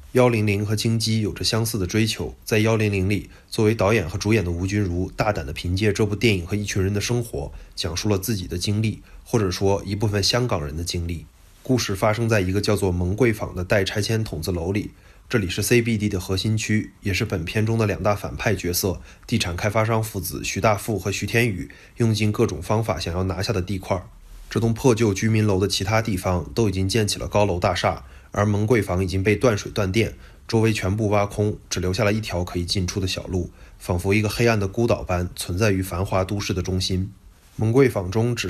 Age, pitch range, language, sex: 20-39, 95-110 Hz, Chinese, male